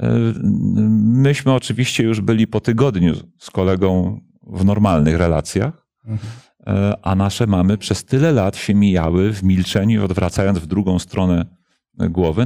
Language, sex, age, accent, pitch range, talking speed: Polish, male, 40-59, native, 85-115 Hz, 125 wpm